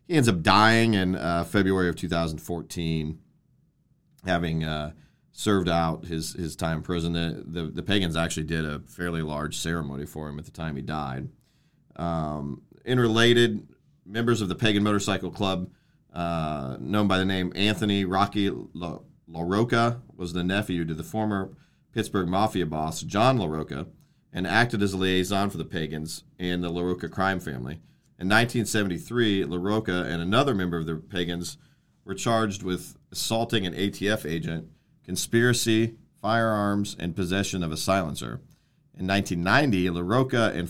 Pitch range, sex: 85-105 Hz, male